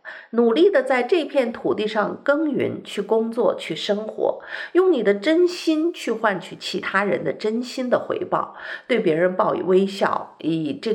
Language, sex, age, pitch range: Chinese, female, 50-69, 205-320 Hz